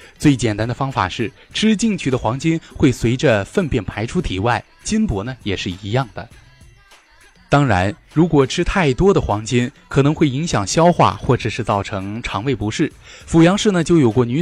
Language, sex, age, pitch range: Chinese, male, 20-39, 105-155 Hz